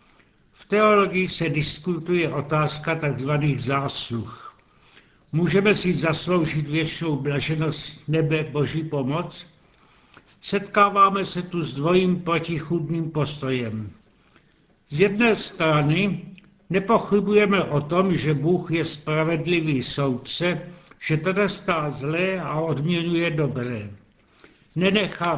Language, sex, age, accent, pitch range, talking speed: Czech, male, 70-89, native, 150-175 Hz, 95 wpm